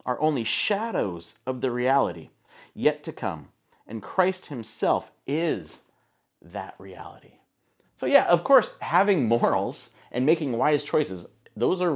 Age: 30-49